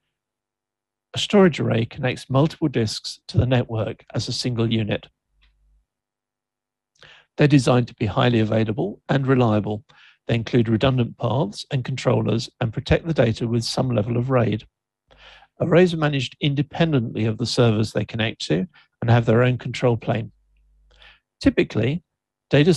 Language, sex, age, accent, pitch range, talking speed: English, male, 50-69, British, 115-135 Hz, 140 wpm